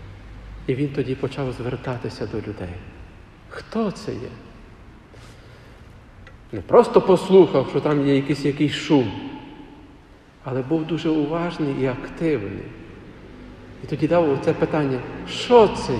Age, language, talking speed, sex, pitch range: 50-69, Ukrainian, 120 wpm, male, 125-175 Hz